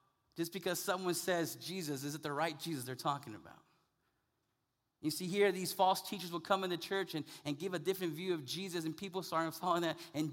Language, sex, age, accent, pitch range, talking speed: English, male, 30-49, American, 150-190 Hz, 215 wpm